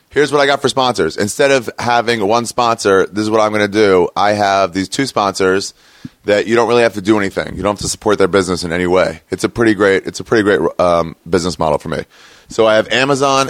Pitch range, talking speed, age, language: 100-120 Hz, 260 wpm, 30-49, English